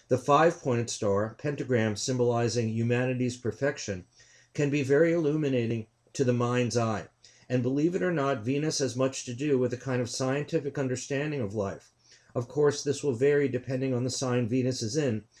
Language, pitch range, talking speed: English, 120-140 Hz, 175 wpm